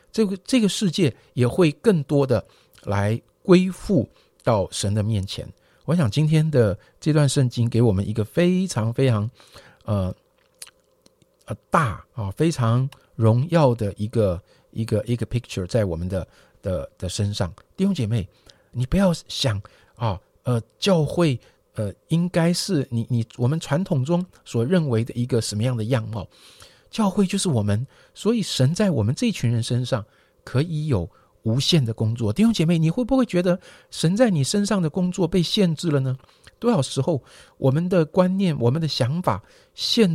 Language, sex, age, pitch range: Chinese, male, 50-69, 115-175 Hz